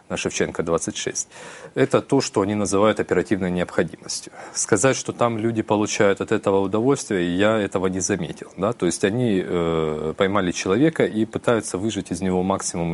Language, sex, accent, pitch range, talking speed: Russian, male, native, 90-115 Hz, 155 wpm